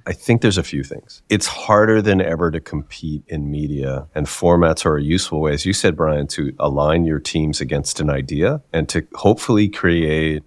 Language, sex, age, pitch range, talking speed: English, male, 40-59, 75-100 Hz, 200 wpm